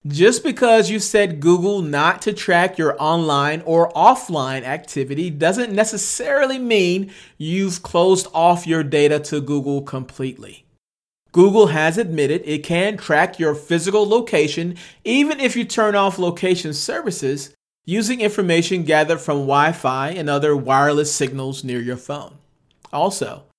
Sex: male